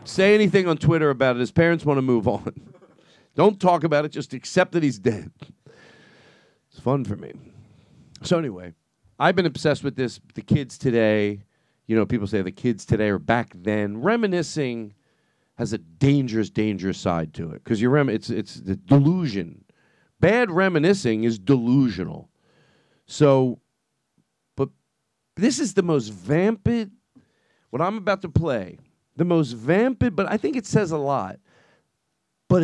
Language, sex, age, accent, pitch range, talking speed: English, male, 40-59, American, 115-190 Hz, 160 wpm